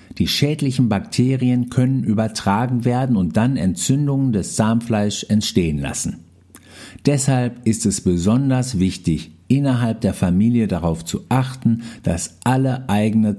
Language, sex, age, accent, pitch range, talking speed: German, male, 50-69, German, 95-125 Hz, 120 wpm